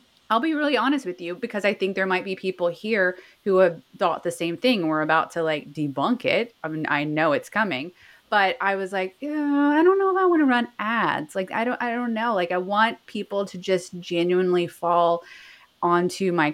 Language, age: English, 30-49